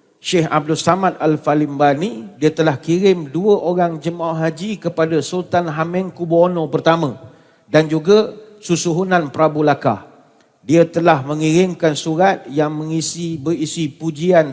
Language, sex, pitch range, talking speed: Malay, male, 145-170 Hz, 120 wpm